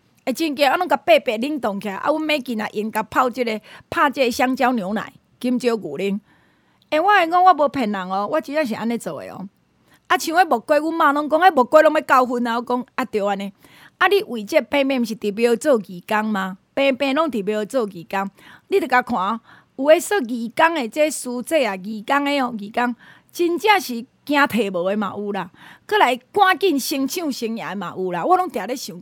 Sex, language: female, Chinese